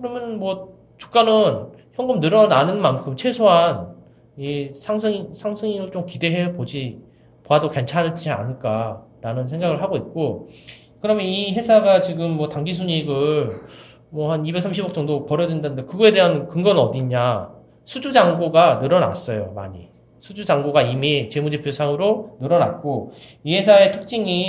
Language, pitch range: Korean, 130-190 Hz